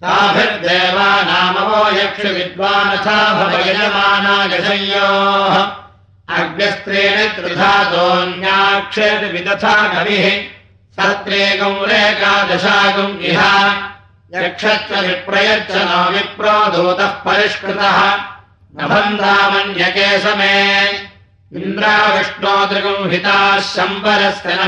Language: Russian